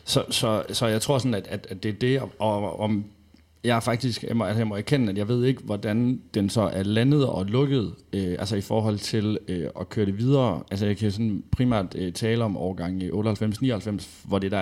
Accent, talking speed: native, 240 wpm